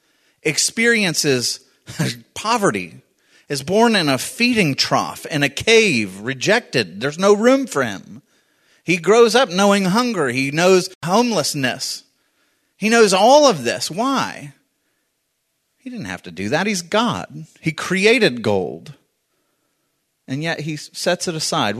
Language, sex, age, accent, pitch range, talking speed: English, male, 30-49, American, 135-210 Hz, 130 wpm